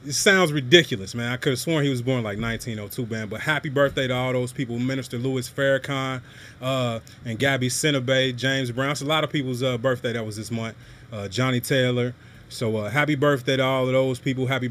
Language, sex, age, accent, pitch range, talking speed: English, male, 30-49, American, 120-140 Hz, 225 wpm